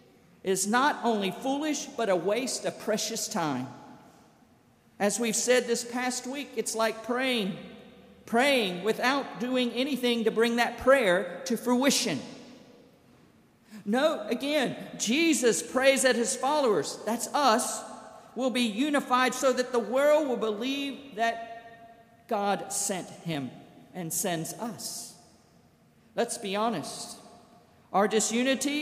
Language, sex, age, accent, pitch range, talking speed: English, male, 50-69, American, 215-260 Hz, 125 wpm